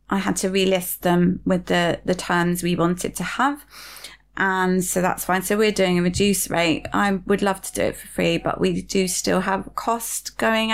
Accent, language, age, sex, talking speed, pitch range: British, English, 30-49, female, 210 wpm, 170-195 Hz